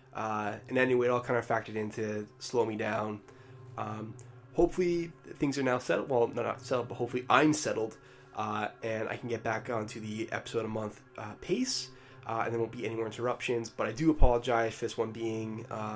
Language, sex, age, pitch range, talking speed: English, male, 20-39, 110-130 Hz, 215 wpm